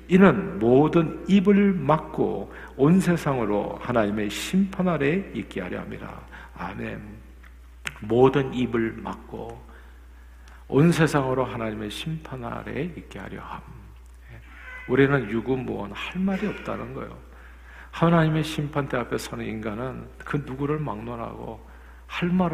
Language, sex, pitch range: Korean, male, 105-155 Hz